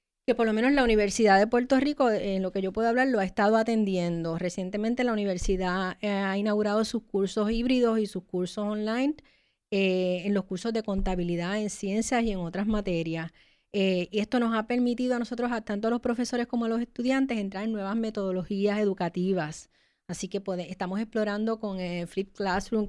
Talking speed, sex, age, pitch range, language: 190 wpm, female, 30-49, 190-230 Hz, Spanish